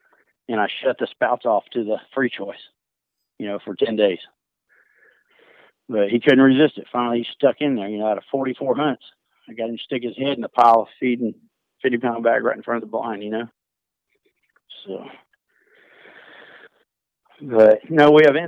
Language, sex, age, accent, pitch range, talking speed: English, male, 40-59, American, 110-135 Hz, 190 wpm